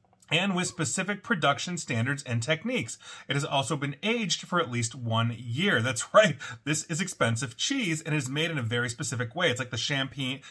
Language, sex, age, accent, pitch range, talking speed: English, male, 30-49, American, 120-165 Hz, 200 wpm